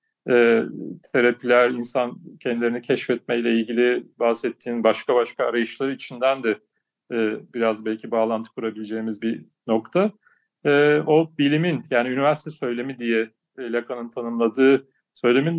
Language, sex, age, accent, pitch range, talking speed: Turkish, male, 40-59, native, 115-145 Hz, 110 wpm